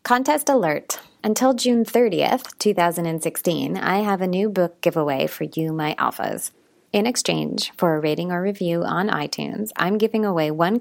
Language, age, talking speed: English, 30-49, 160 wpm